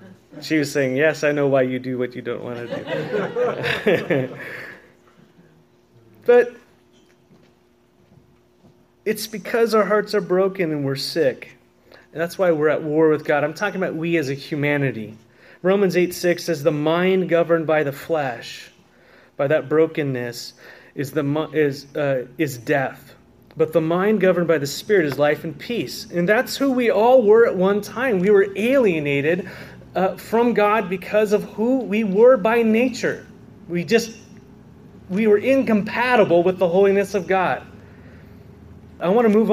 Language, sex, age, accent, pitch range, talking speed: English, male, 30-49, American, 155-225 Hz, 160 wpm